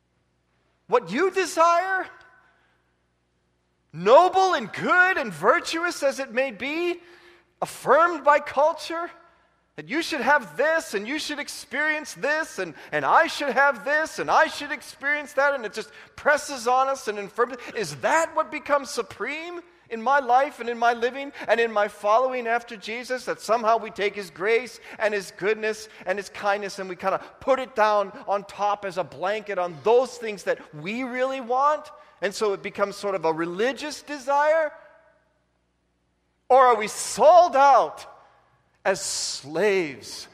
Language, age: English, 40-59